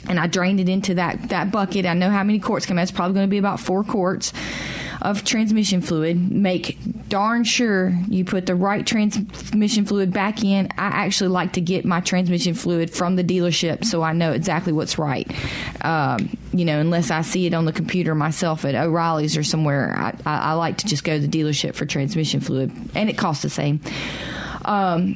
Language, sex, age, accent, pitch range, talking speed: English, female, 30-49, American, 160-195 Hz, 210 wpm